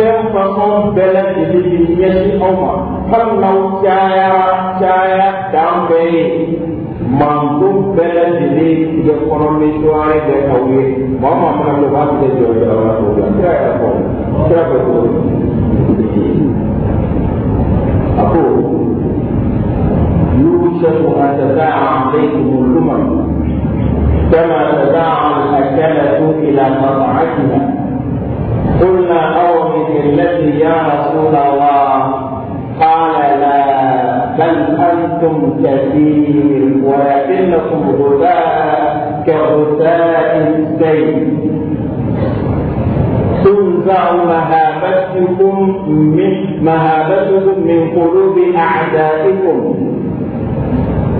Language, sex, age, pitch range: French, male, 50-69, 145-185 Hz